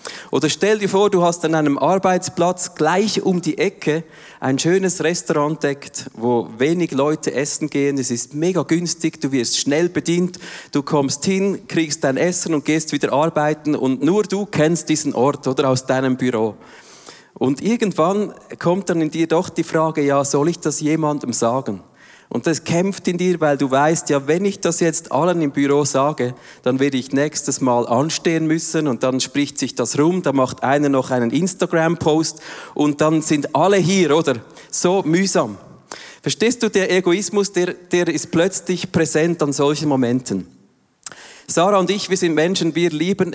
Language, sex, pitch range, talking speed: German, male, 140-175 Hz, 180 wpm